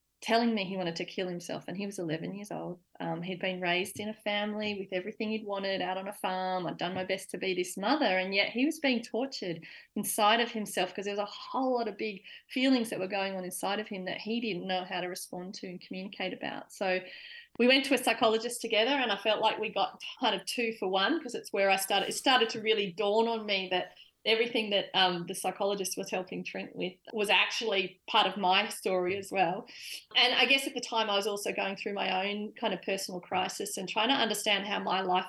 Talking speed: 245 wpm